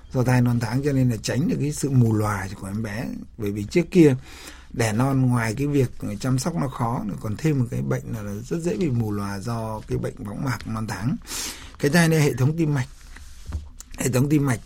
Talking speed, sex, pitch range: 240 wpm, male, 105-135 Hz